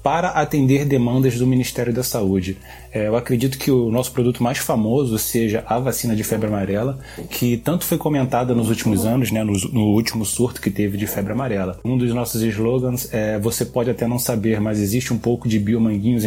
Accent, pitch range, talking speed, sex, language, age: Brazilian, 110-130 Hz, 195 wpm, male, Portuguese, 20-39